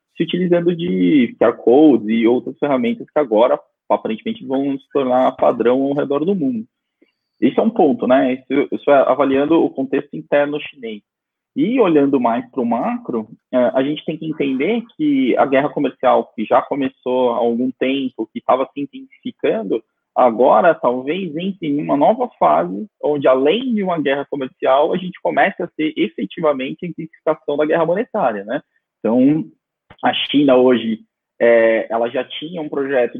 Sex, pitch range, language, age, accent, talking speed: male, 120-175 Hz, Portuguese, 20-39, Brazilian, 165 wpm